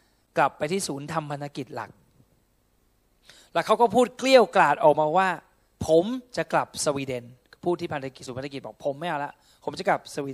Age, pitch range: 20-39, 140-185 Hz